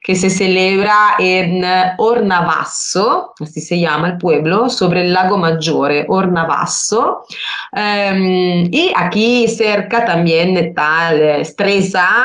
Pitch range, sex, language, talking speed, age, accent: 160-210 Hz, female, Spanish, 110 wpm, 30-49, Italian